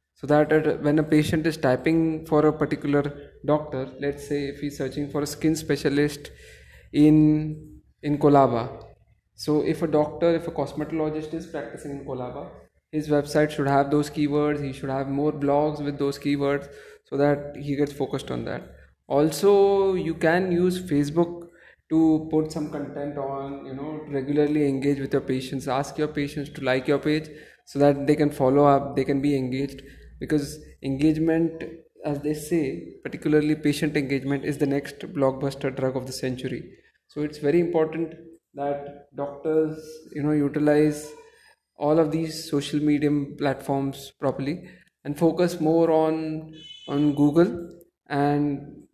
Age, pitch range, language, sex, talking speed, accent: 20-39, 140-160 Hz, English, male, 155 wpm, Indian